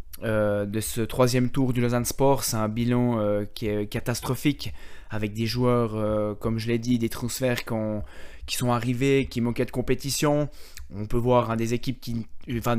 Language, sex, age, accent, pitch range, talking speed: French, male, 20-39, French, 110-130 Hz, 195 wpm